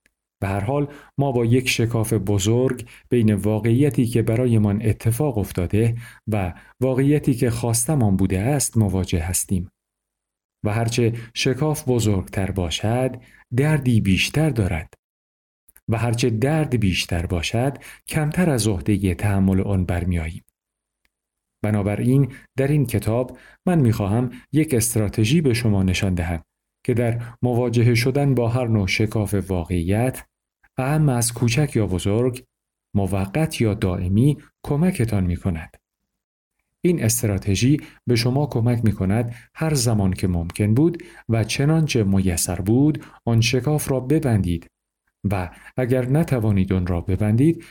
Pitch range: 100-130 Hz